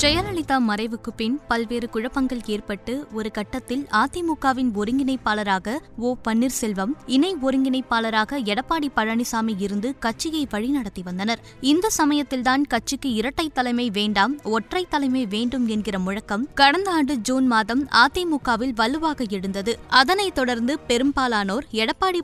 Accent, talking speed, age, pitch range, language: native, 115 wpm, 20-39, 225-275 Hz, Tamil